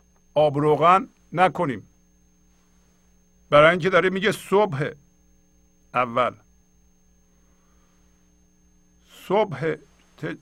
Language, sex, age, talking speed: Persian, male, 50-69, 60 wpm